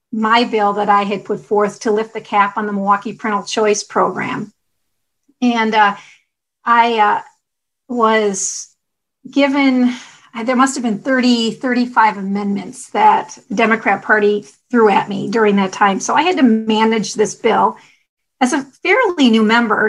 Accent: American